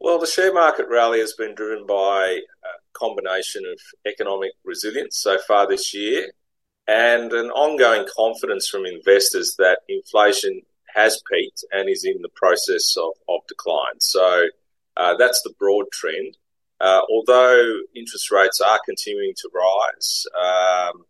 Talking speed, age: 145 wpm, 30-49